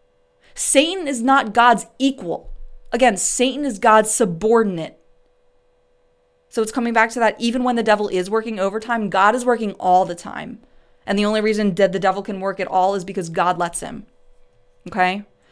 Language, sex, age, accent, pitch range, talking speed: English, female, 20-39, American, 165-230 Hz, 180 wpm